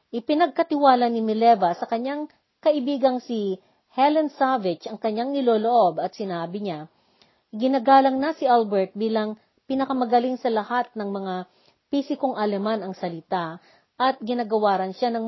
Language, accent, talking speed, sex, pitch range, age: Filipino, native, 130 wpm, female, 195-265 Hz, 40-59